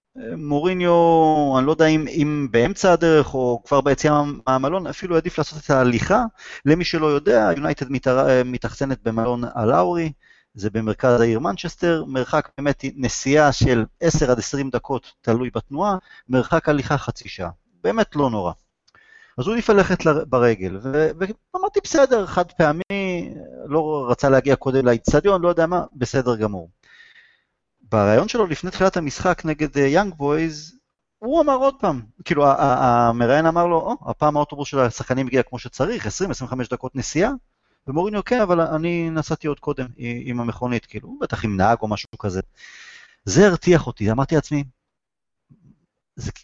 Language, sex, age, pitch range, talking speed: Hebrew, male, 30-49, 125-175 Hz, 150 wpm